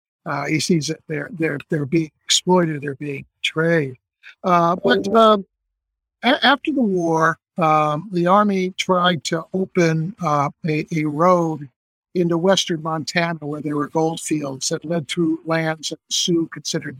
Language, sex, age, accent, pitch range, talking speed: English, male, 60-79, American, 155-180 Hz, 160 wpm